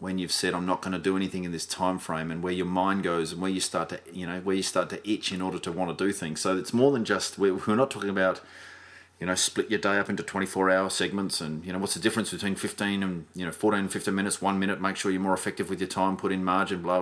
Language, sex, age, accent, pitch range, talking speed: English, male, 30-49, Australian, 90-100 Hz, 300 wpm